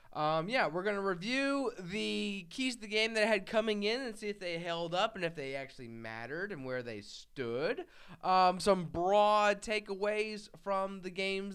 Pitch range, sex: 150-215 Hz, male